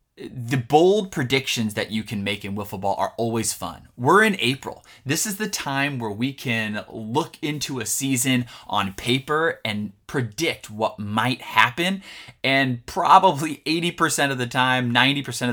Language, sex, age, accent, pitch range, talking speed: English, male, 20-39, American, 100-130 Hz, 155 wpm